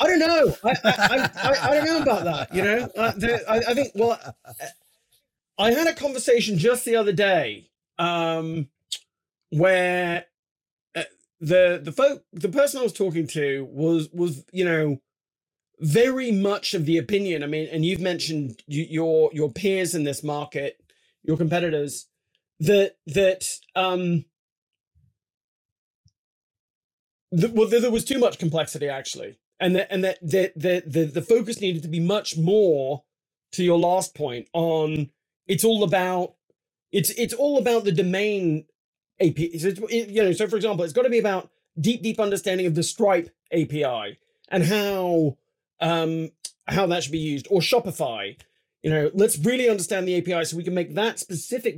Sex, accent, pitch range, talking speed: male, British, 160-210 Hz, 165 wpm